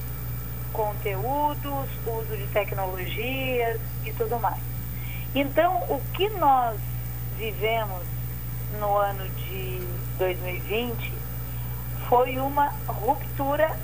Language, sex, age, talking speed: Portuguese, female, 50-69, 80 wpm